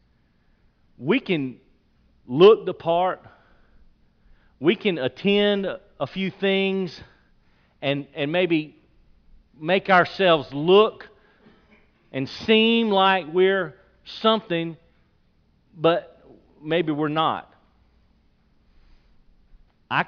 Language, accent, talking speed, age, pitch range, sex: English, American, 80 wpm, 40-59, 150-200 Hz, male